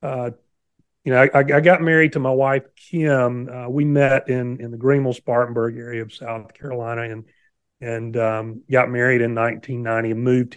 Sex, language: male, English